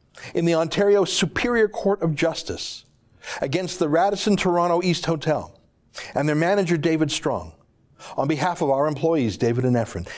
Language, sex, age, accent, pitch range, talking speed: English, male, 60-79, American, 130-185 Hz, 155 wpm